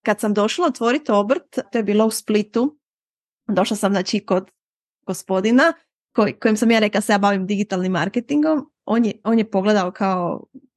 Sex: female